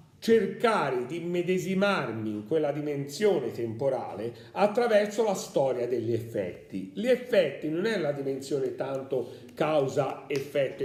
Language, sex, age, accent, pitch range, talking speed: Italian, male, 40-59, native, 155-225 Hz, 110 wpm